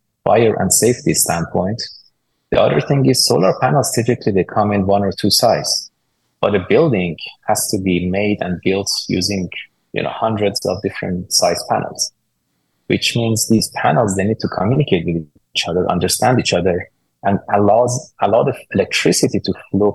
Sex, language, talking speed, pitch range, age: male, English, 170 wpm, 95-110 Hz, 30-49